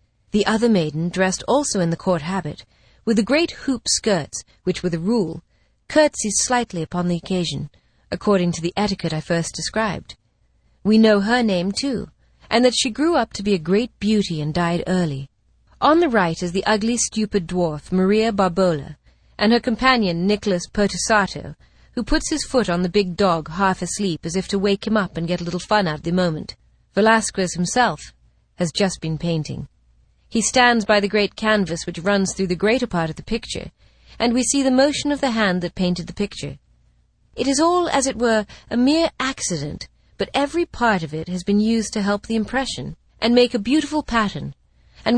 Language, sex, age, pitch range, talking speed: English, female, 30-49, 175-225 Hz, 195 wpm